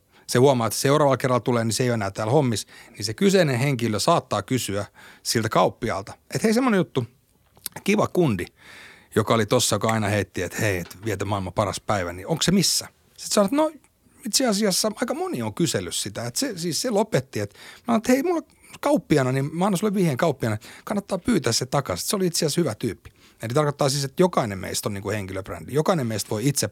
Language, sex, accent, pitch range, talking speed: Finnish, male, native, 105-140 Hz, 210 wpm